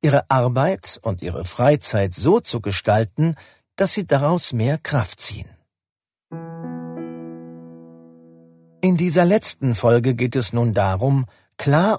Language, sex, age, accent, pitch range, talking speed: German, male, 50-69, German, 95-150 Hz, 115 wpm